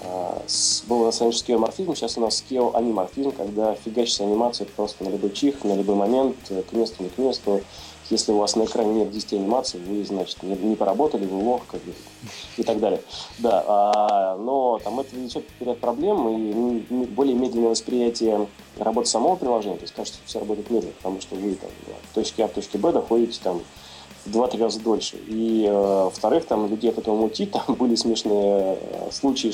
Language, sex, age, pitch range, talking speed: Russian, male, 20-39, 100-120 Hz, 185 wpm